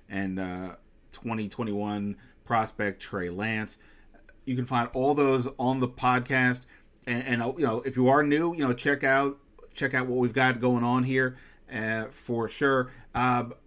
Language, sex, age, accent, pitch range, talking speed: English, male, 30-49, American, 110-135 Hz, 165 wpm